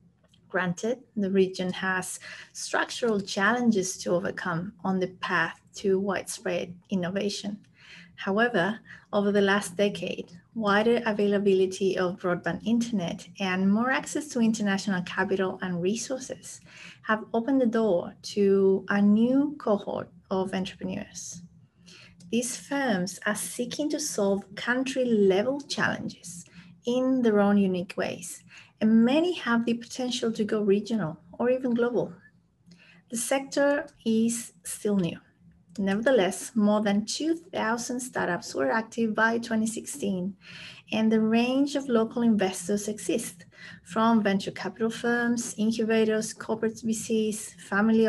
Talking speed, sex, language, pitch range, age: 120 wpm, female, English, 185-230 Hz, 30-49